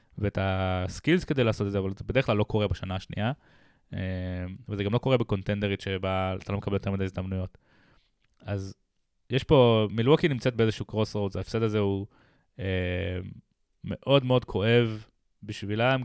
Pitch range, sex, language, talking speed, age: 95-110 Hz, male, Hebrew, 155 wpm, 20-39